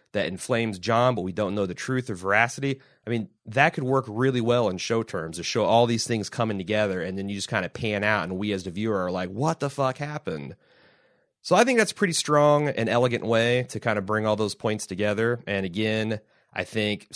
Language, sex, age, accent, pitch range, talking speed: English, male, 30-49, American, 100-125 Hz, 240 wpm